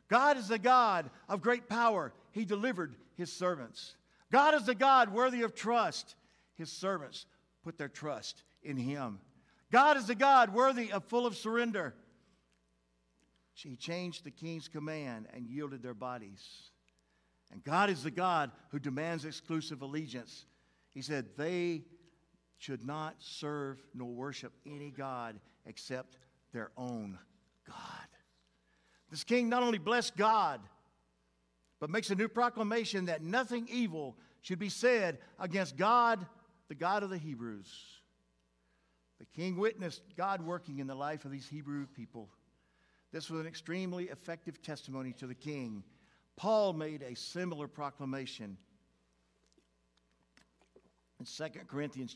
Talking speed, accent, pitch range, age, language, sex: 135 wpm, American, 120-195 Hz, 50-69, English, male